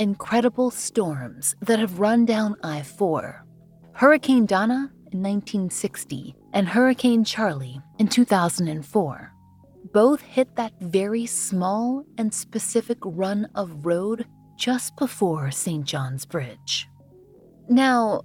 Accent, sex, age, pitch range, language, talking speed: American, female, 30-49, 165-230 Hz, English, 105 wpm